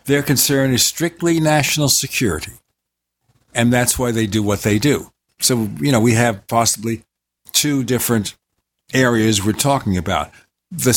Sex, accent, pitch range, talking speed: male, American, 105-135 Hz, 150 wpm